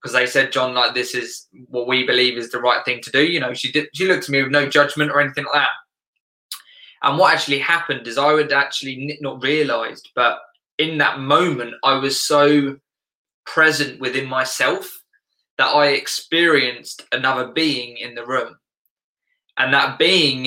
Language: English